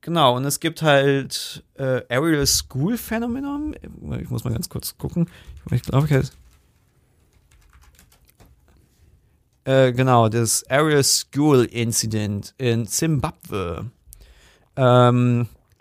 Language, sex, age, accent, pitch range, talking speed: German, male, 40-59, German, 115-140 Hz, 105 wpm